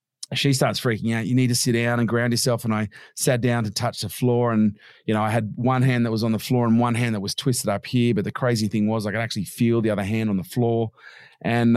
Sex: male